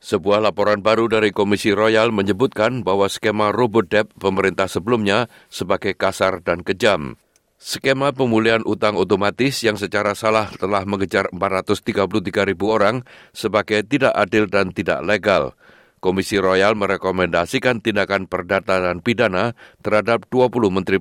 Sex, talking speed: male, 125 wpm